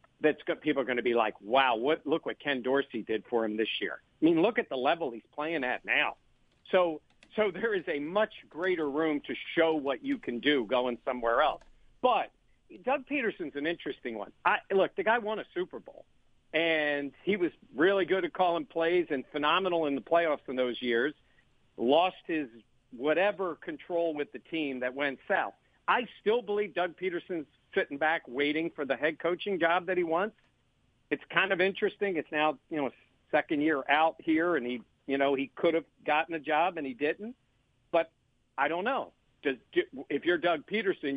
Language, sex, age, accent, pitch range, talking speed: English, male, 50-69, American, 135-185 Hz, 195 wpm